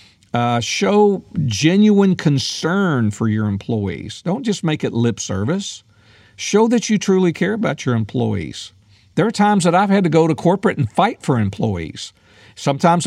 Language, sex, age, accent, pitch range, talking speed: English, male, 50-69, American, 110-165 Hz, 165 wpm